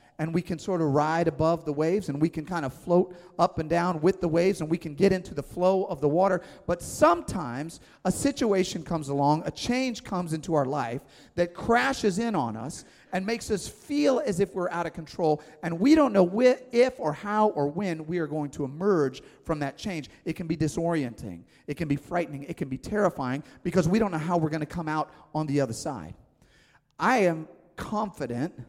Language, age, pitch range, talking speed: English, 40-59, 150-185 Hz, 220 wpm